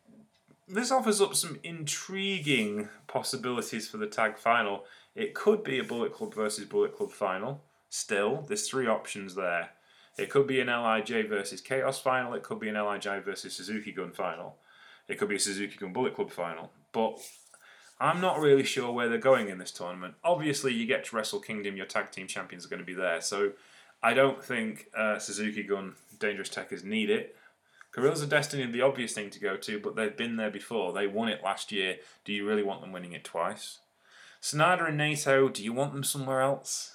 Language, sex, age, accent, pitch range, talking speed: English, male, 20-39, British, 105-150 Hz, 205 wpm